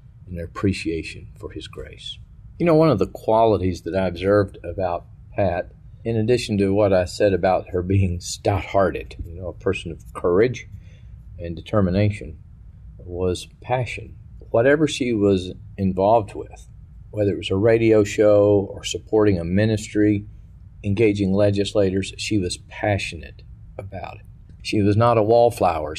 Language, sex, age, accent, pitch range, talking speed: English, male, 50-69, American, 90-105 Hz, 150 wpm